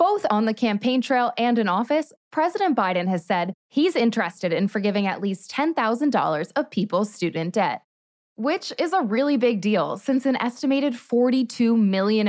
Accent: American